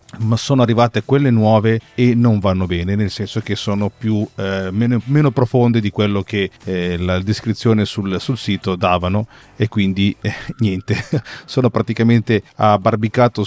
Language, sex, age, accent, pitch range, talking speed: Italian, male, 40-59, native, 100-120 Hz, 155 wpm